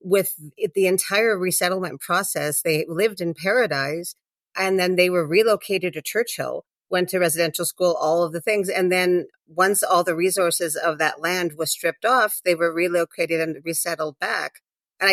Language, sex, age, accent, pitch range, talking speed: English, female, 40-59, American, 160-195 Hz, 170 wpm